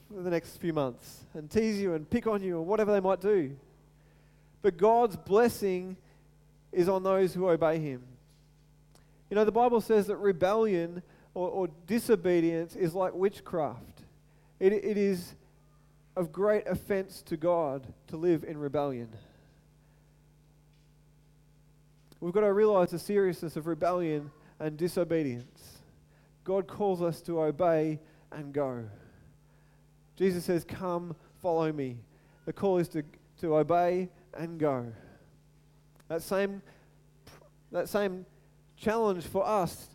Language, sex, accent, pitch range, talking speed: English, male, Australian, 145-185 Hz, 130 wpm